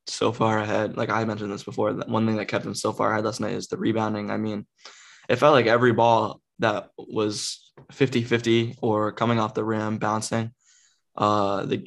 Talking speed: 195 wpm